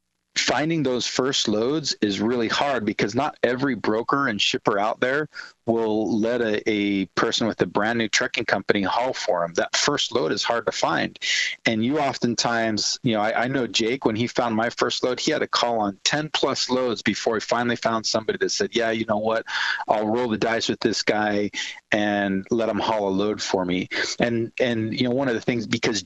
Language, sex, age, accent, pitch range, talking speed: English, male, 40-59, American, 105-120 Hz, 215 wpm